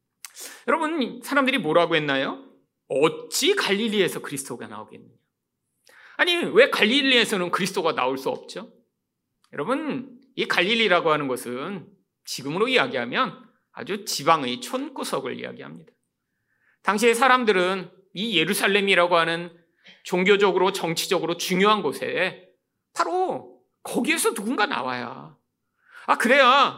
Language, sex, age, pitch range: Korean, male, 40-59, 185-290 Hz